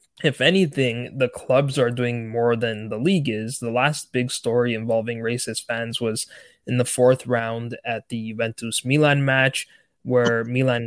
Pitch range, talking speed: 115-135 Hz, 165 wpm